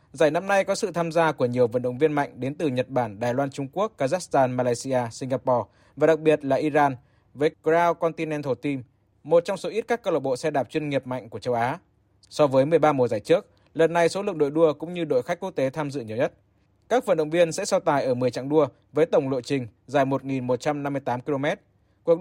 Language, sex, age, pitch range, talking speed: Vietnamese, male, 20-39, 125-160 Hz, 245 wpm